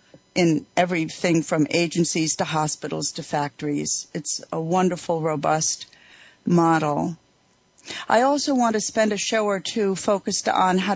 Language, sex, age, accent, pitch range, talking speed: English, female, 50-69, American, 165-210 Hz, 135 wpm